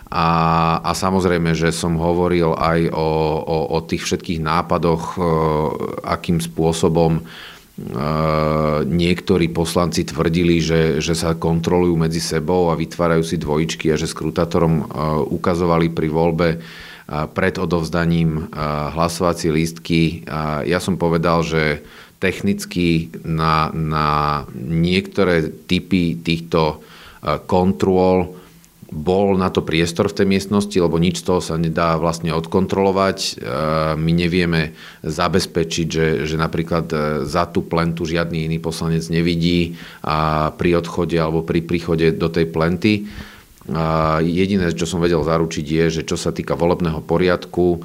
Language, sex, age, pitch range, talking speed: Slovak, male, 40-59, 80-85 Hz, 125 wpm